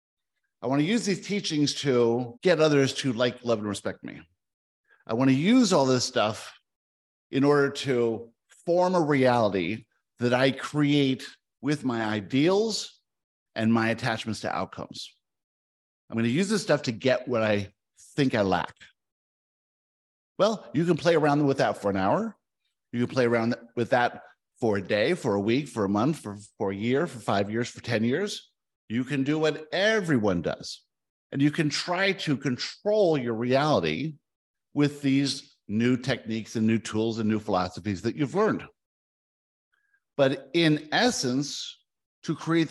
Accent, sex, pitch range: American, male, 110-155 Hz